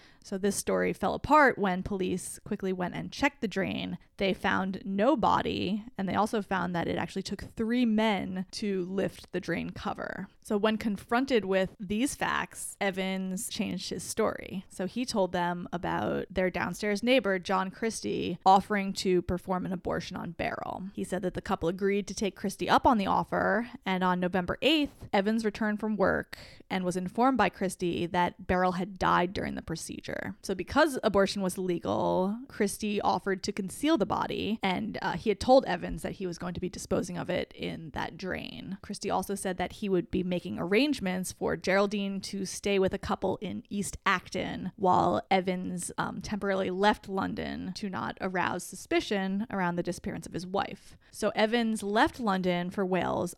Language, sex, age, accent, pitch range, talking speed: English, female, 20-39, American, 185-215 Hz, 180 wpm